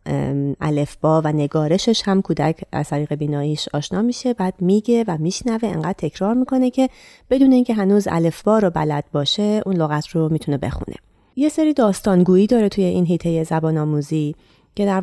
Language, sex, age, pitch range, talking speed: Persian, female, 30-49, 155-235 Hz, 170 wpm